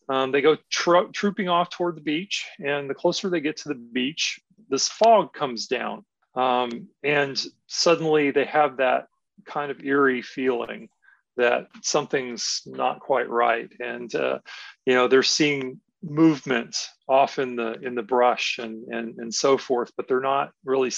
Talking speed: 165 wpm